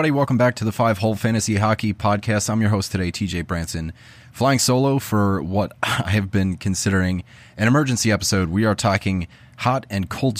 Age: 30-49